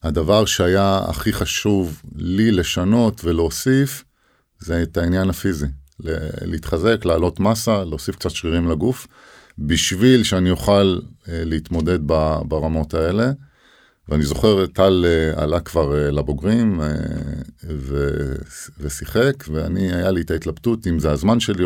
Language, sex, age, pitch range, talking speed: Hebrew, male, 50-69, 80-100 Hz, 110 wpm